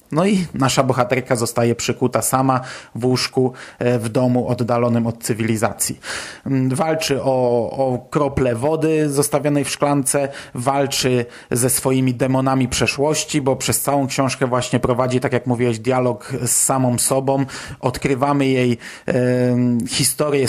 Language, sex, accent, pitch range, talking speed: Polish, male, native, 125-140 Hz, 130 wpm